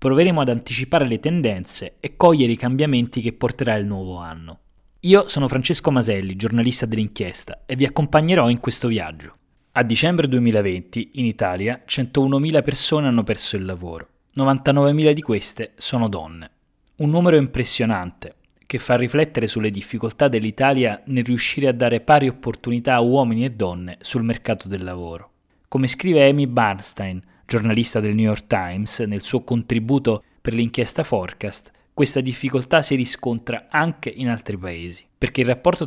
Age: 20-39